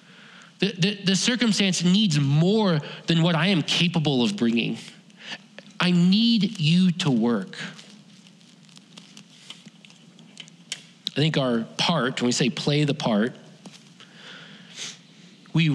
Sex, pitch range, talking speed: male, 160-200 Hz, 110 wpm